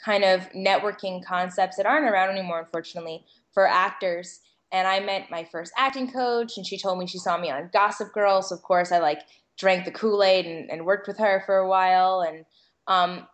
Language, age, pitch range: English, 10-29, 185-225 Hz